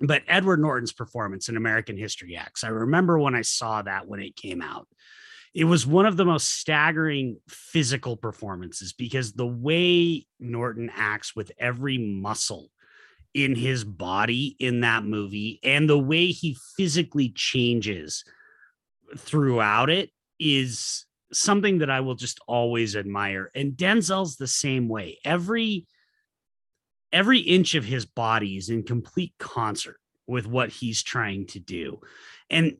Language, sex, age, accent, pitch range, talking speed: English, male, 30-49, American, 115-160 Hz, 145 wpm